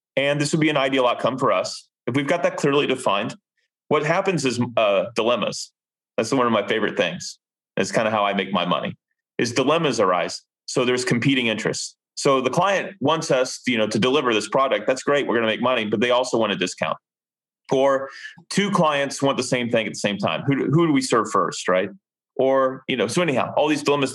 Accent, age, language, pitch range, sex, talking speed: American, 30-49, English, 115-140 Hz, male, 225 wpm